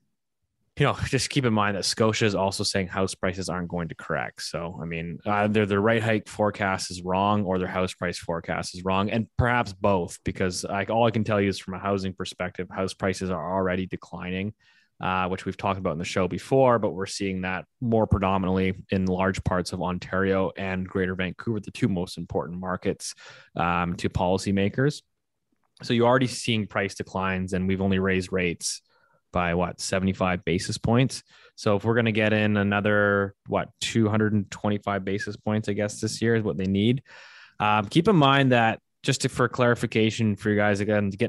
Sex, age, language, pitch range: male, 20-39, English, 95-110 Hz